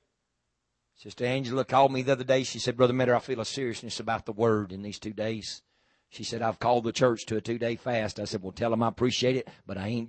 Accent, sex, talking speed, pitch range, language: American, male, 255 wpm, 105-130 Hz, English